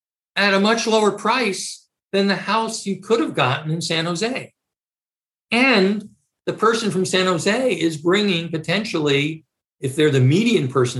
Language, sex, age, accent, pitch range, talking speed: English, male, 50-69, American, 135-180 Hz, 160 wpm